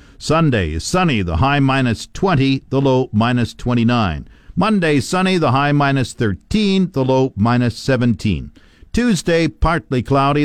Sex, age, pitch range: male, 50-69, 115-165 Hz